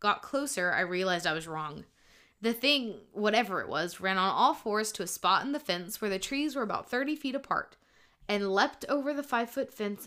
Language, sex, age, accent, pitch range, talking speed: English, female, 20-39, American, 190-275 Hz, 215 wpm